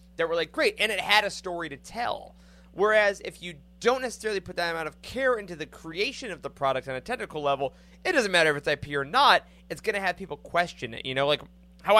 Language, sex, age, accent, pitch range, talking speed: English, male, 30-49, American, 135-215 Hz, 250 wpm